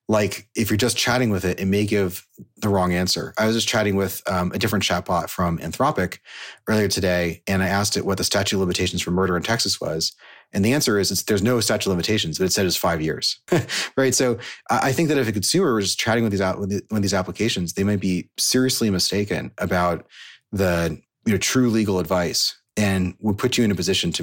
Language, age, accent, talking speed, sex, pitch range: English, 30-49, American, 235 wpm, male, 90-110 Hz